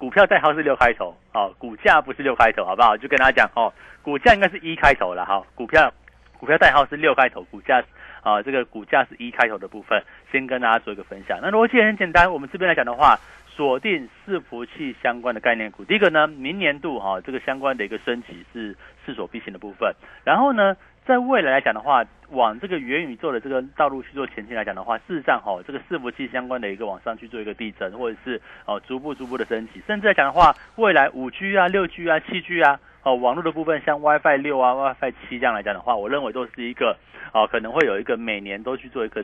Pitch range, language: 120-170 Hz, Chinese